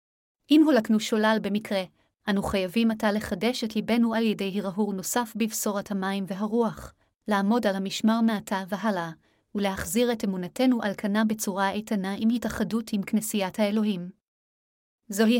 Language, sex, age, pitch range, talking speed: Hebrew, female, 30-49, 200-230 Hz, 135 wpm